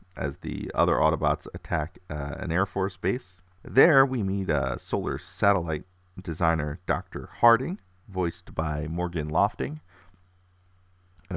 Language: English